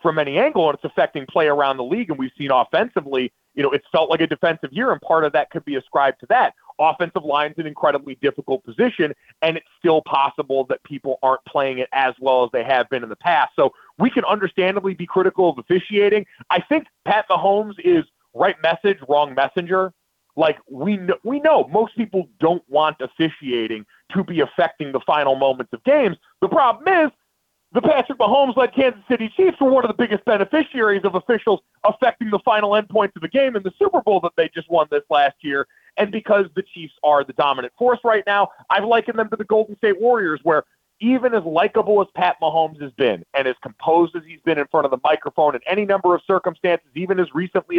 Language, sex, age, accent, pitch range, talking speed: English, male, 30-49, American, 145-210 Hz, 215 wpm